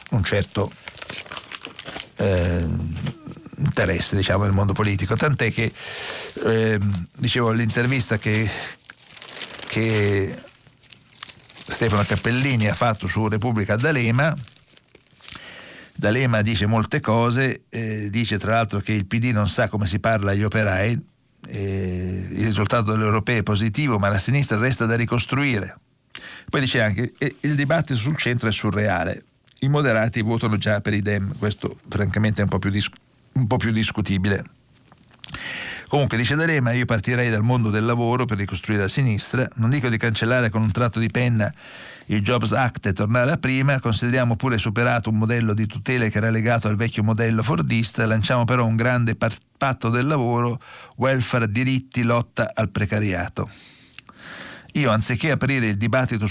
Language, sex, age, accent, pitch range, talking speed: Italian, male, 60-79, native, 105-125 Hz, 150 wpm